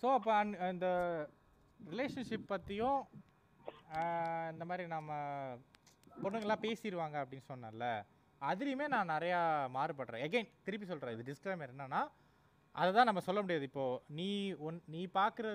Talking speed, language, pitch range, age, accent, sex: 125 wpm, Tamil, 150-210 Hz, 20-39, native, male